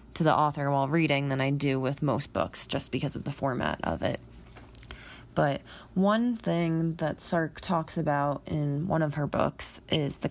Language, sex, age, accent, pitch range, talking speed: English, female, 20-39, American, 145-165 Hz, 185 wpm